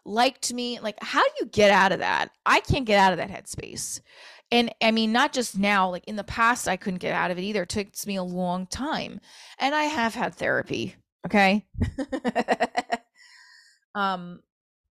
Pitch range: 185-235 Hz